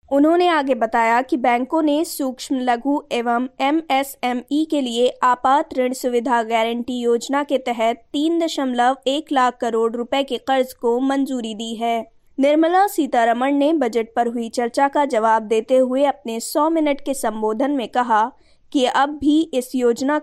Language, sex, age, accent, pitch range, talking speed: Hindi, female, 20-39, native, 235-280 Hz, 160 wpm